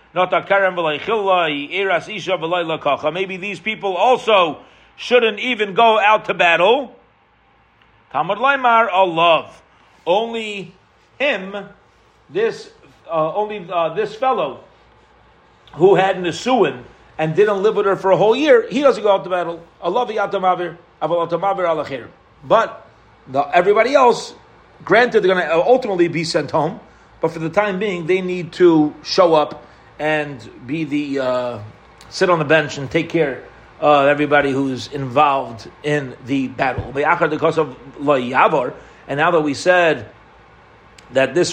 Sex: male